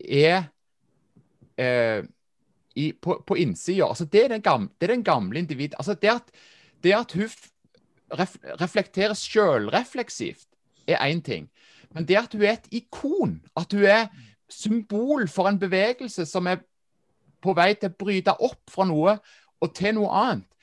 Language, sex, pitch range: English, male, 155-205 Hz